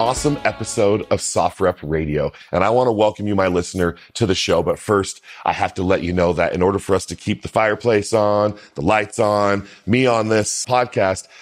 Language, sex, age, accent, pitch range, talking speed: English, male, 40-59, American, 95-125 Hz, 220 wpm